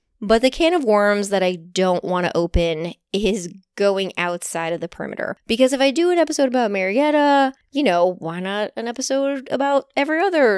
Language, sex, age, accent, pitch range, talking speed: English, female, 20-39, American, 175-250 Hz, 195 wpm